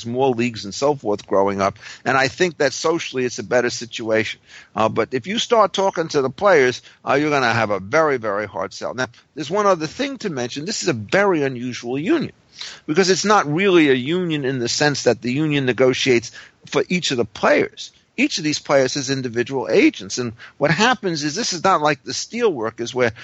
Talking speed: 220 wpm